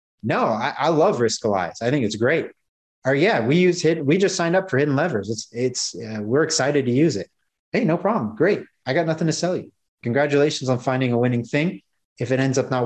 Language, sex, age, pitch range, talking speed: English, male, 30-49, 120-150 Hz, 240 wpm